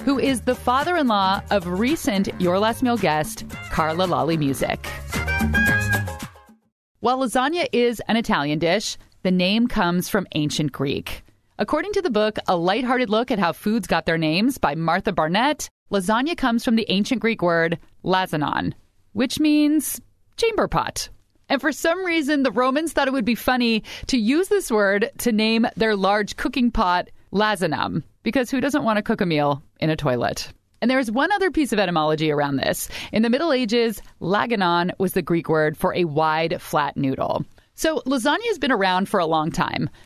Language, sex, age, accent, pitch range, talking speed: English, female, 30-49, American, 170-255 Hz, 180 wpm